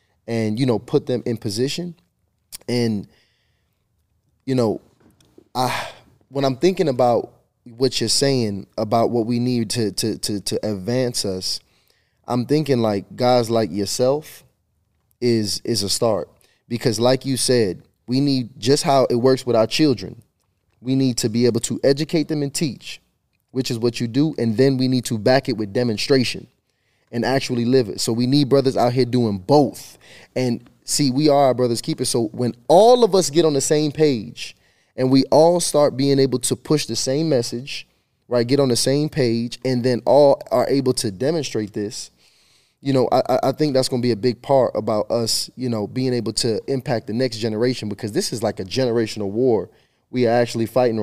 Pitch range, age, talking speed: 115-135 Hz, 20-39, 190 wpm